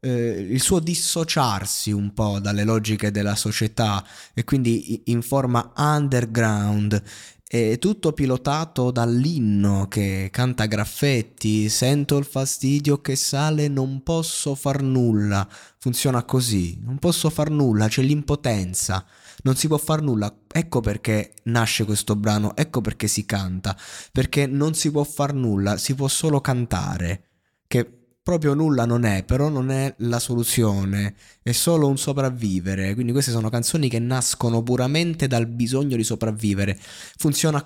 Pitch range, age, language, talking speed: 105-140 Hz, 20-39, Italian, 140 wpm